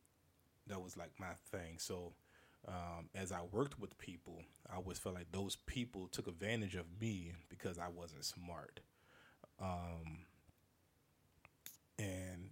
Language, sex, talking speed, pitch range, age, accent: English, male, 135 wpm, 90-100 Hz, 20-39, American